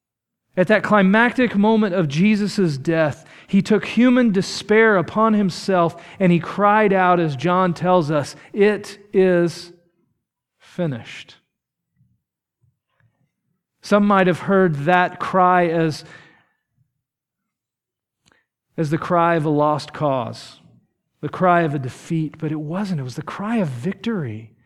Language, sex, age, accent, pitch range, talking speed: English, male, 40-59, American, 175-235 Hz, 125 wpm